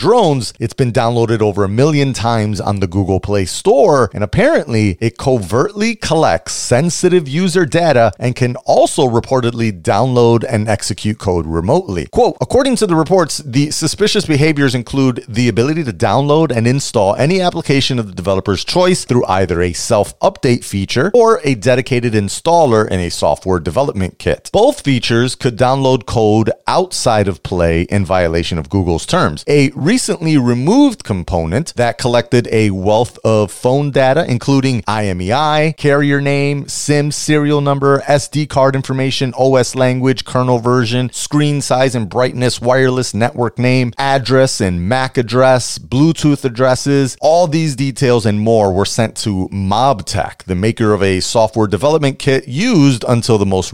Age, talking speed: 30-49, 150 wpm